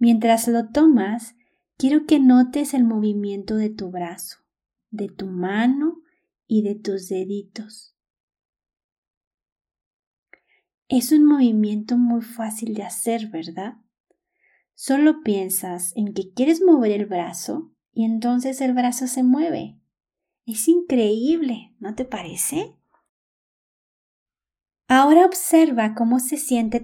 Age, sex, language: 30-49, female, Spanish